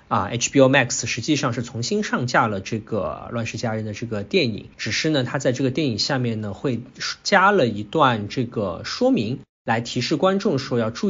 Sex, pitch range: male, 110-140 Hz